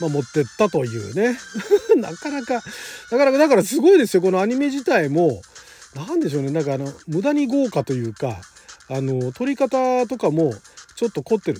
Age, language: 40-59, Japanese